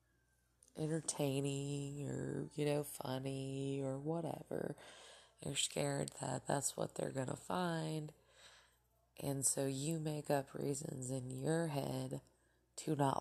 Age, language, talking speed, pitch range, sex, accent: 20-39, English, 125 wpm, 125-160 Hz, female, American